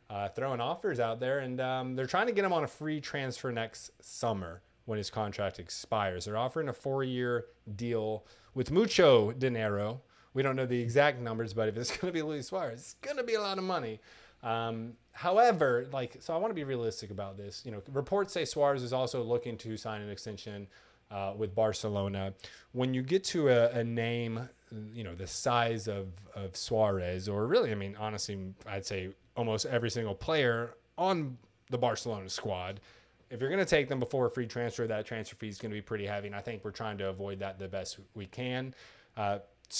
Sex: male